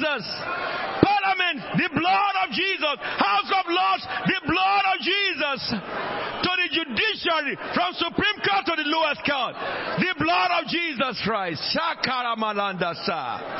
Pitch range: 225-310 Hz